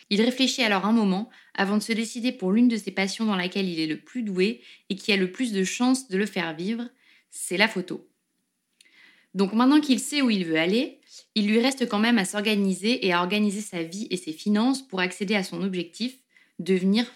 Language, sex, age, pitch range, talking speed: French, female, 20-39, 190-245 Hz, 225 wpm